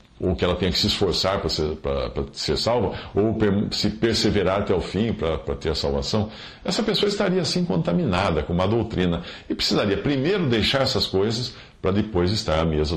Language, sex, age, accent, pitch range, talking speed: English, male, 50-69, Brazilian, 80-115 Hz, 185 wpm